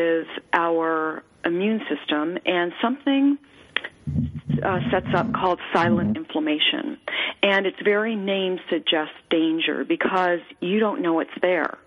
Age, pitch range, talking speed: 40-59, 160-265 Hz, 120 wpm